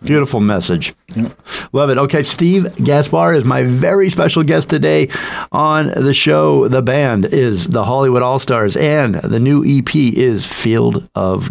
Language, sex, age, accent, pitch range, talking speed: English, male, 50-69, American, 100-135 Hz, 150 wpm